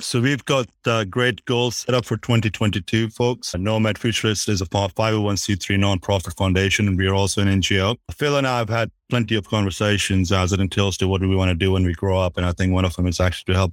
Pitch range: 95-110 Hz